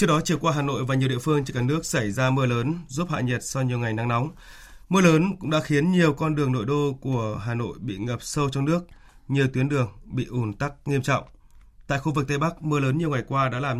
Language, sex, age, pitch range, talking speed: Vietnamese, male, 20-39, 120-150 Hz, 275 wpm